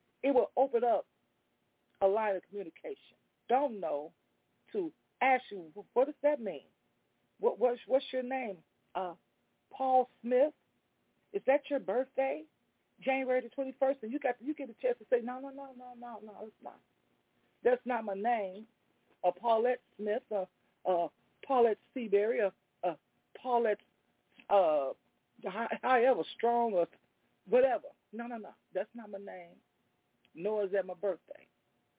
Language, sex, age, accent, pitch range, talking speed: English, female, 40-59, American, 210-270 Hz, 160 wpm